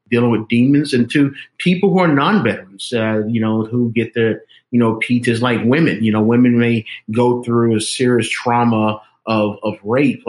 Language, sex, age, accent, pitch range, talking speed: English, male, 40-59, American, 115-135 Hz, 190 wpm